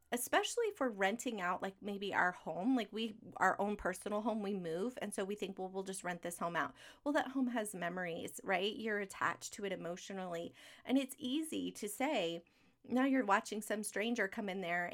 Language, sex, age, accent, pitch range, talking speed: English, female, 30-49, American, 185-245 Hz, 205 wpm